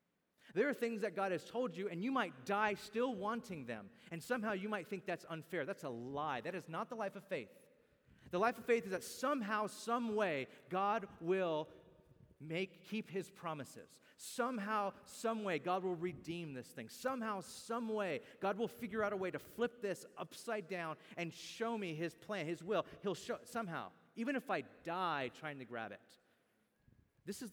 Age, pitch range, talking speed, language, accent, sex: 30-49, 145-205 Hz, 195 wpm, English, American, male